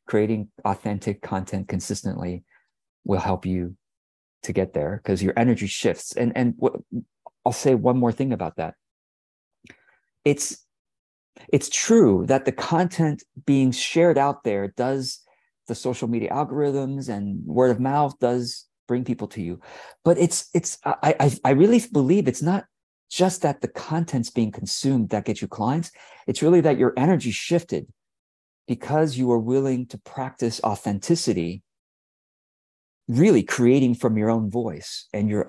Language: English